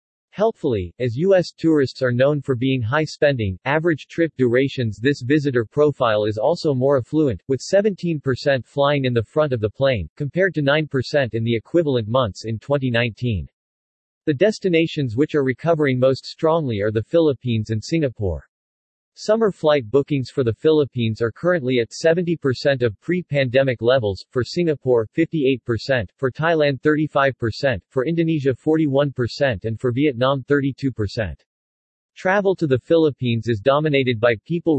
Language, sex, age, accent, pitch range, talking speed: English, male, 40-59, American, 115-150 Hz, 145 wpm